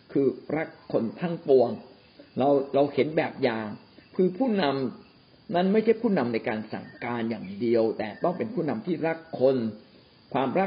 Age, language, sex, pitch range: 60-79, Thai, male, 120-180 Hz